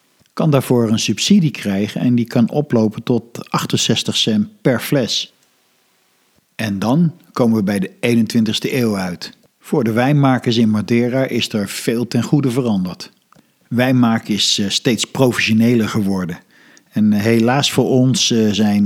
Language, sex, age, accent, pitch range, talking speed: Dutch, male, 50-69, Dutch, 110-125 Hz, 140 wpm